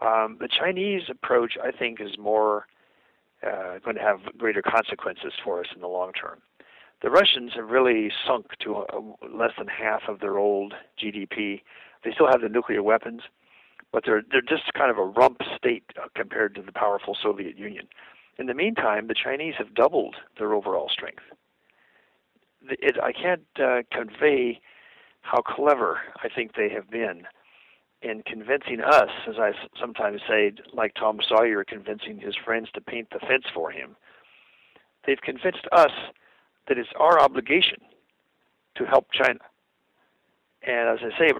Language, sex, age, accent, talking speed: English, male, 50-69, American, 160 wpm